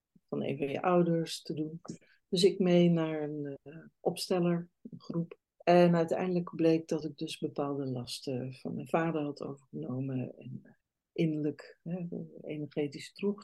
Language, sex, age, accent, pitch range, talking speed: Dutch, female, 60-79, Dutch, 155-190 Hz, 150 wpm